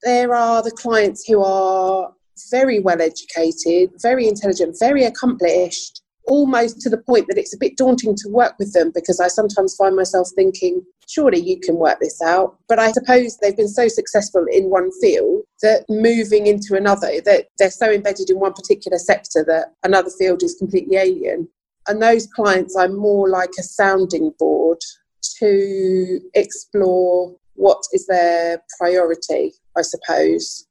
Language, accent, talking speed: English, British, 160 wpm